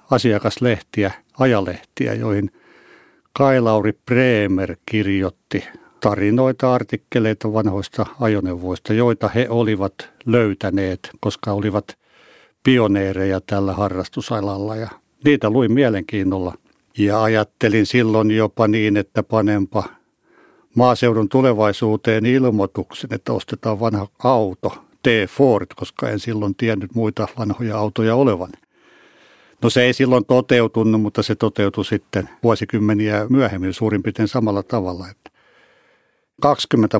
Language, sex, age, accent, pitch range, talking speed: Finnish, male, 60-79, native, 100-115 Hz, 105 wpm